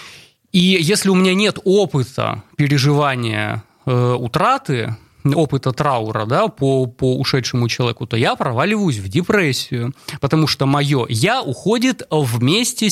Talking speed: 120 wpm